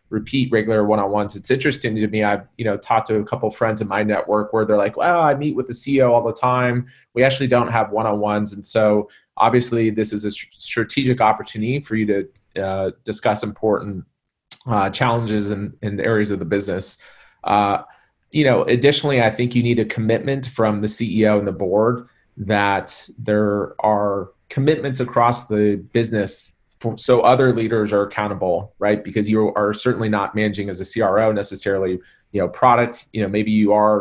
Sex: male